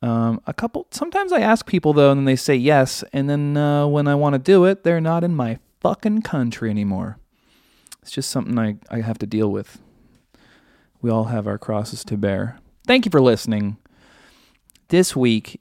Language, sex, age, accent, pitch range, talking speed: English, male, 30-49, American, 110-155 Hz, 195 wpm